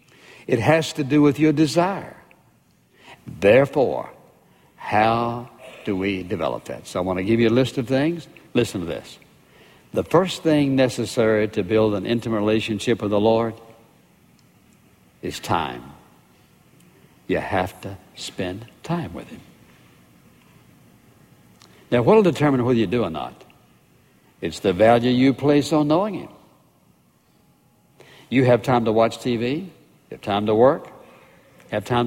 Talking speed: 140 wpm